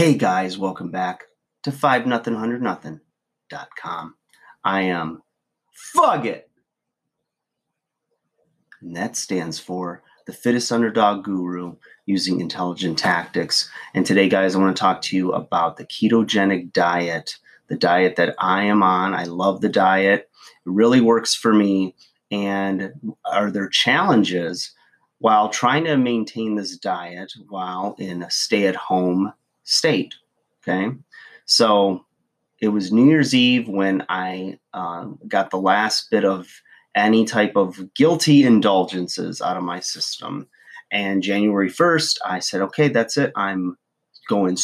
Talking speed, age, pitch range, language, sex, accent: 135 wpm, 30-49, 95-110 Hz, English, male, American